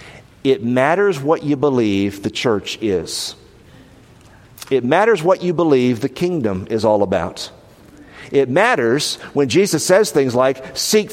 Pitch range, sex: 105-150 Hz, male